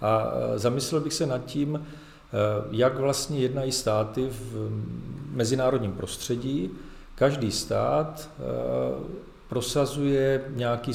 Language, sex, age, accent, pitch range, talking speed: Czech, male, 40-59, native, 105-130 Hz, 95 wpm